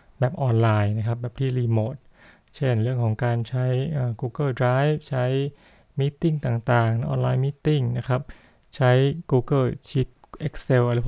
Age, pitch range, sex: 20-39, 115-135 Hz, male